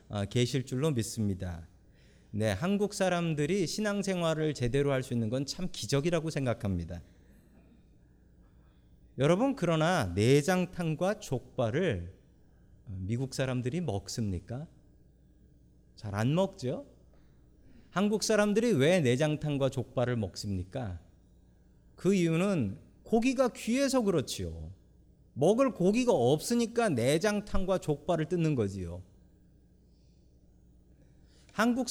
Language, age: Korean, 40-59